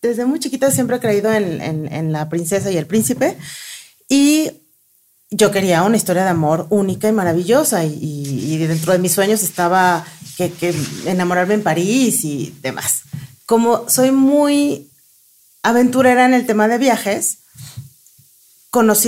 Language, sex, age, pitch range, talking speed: Portuguese, female, 40-59, 165-240 Hz, 150 wpm